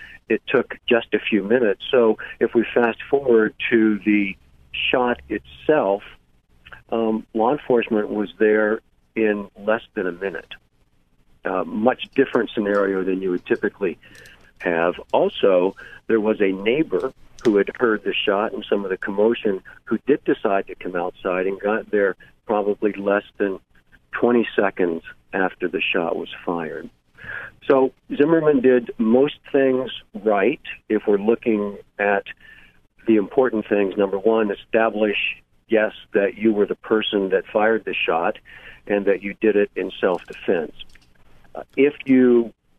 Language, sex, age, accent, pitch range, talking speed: English, male, 50-69, American, 100-120 Hz, 145 wpm